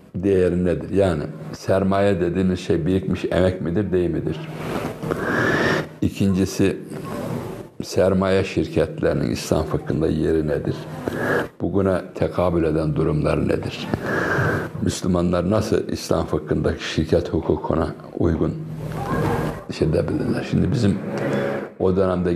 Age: 60-79